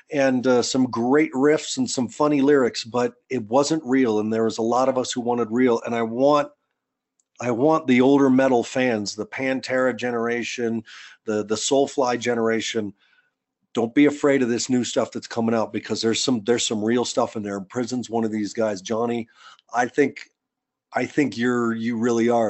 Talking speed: 190 wpm